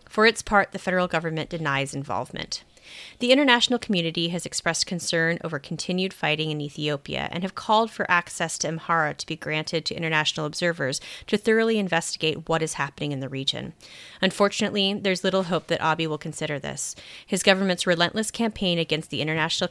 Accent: American